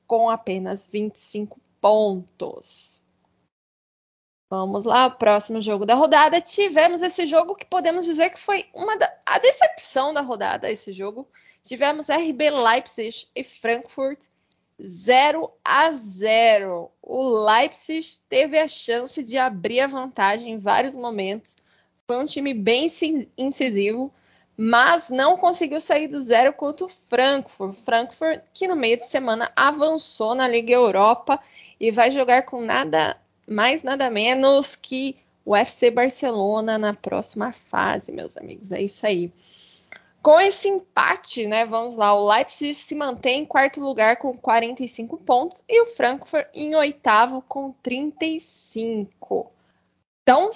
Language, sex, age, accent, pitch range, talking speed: Portuguese, female, 20-39, Brazilian, 225-305 Hz, 135 wpm